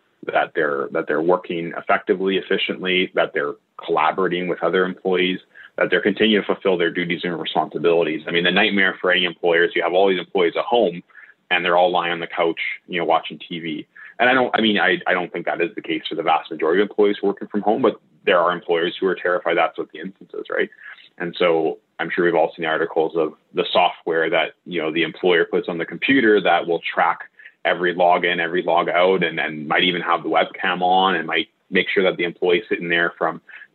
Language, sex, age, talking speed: English, male, 30-49, 235 wpm